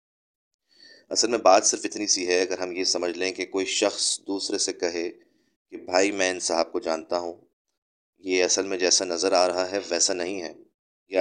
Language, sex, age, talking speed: Urdu, male, 20-39, 205 wpm